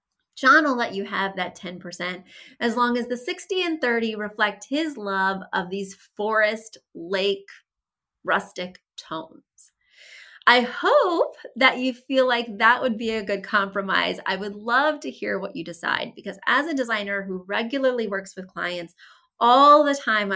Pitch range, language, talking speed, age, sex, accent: 195-260 Hz, English, 160 wpm, 30-49, female, American